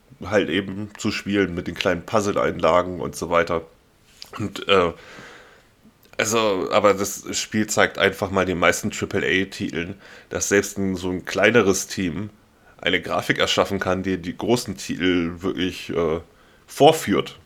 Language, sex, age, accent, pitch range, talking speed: German, male, 10-29, German, 90-105 Hz, 140 wpm